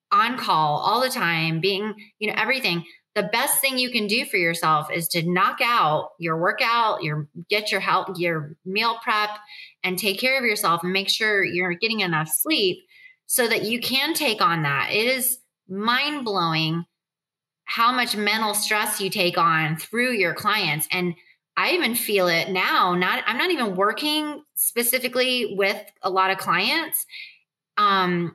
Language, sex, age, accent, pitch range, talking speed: English, female, 20-39, American, 170-230 Hz, 170 wpm